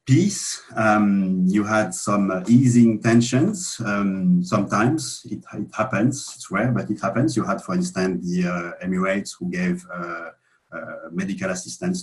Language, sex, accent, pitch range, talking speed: English, male, French, 95-135 Hz, 155 wpm